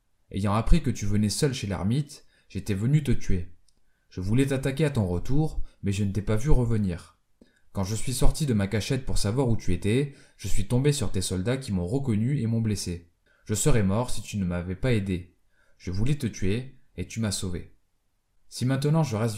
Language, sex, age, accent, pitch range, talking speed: French, male, 20-39, French, 95-125 Hz, 215 wpm